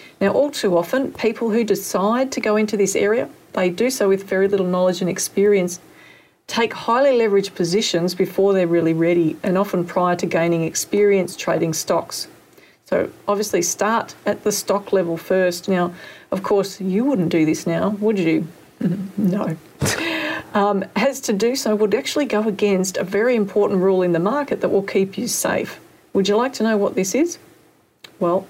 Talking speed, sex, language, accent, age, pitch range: 180 wpm, female, English, Australian, 40-59, 185-215 Hz